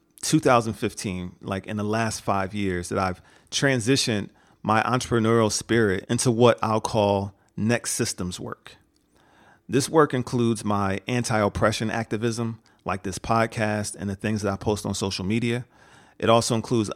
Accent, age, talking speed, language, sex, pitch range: American, 40-59, 145 wpm, English, male, 100-115 Hz